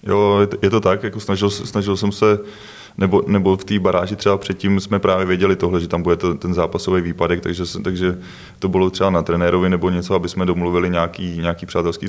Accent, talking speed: native, 205 wpm